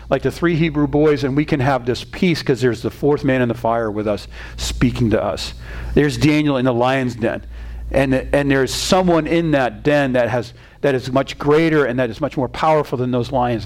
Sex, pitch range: male, 110-145 Hz